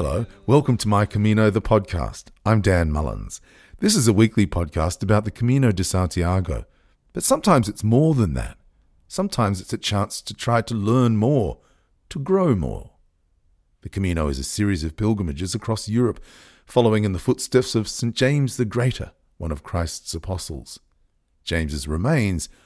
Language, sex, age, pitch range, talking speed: English, male, 40-59, 85-120 Hz, 165 wpm